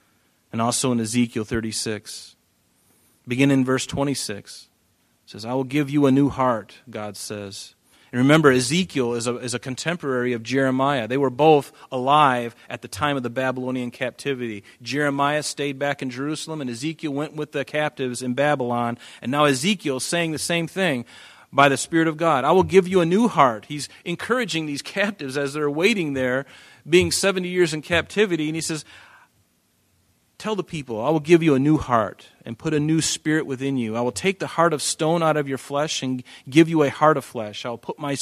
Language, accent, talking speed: English, American, 205 wpm